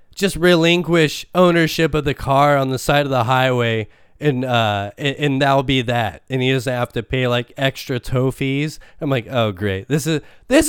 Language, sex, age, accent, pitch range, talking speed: English, male, 20-39, American, 130-185 Hz, 200 wpm